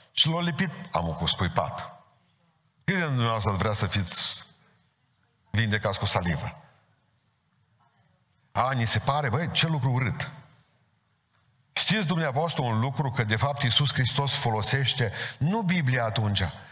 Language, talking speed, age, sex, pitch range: Romanian, 130 wpm, 50-69, male, 115-150 Hz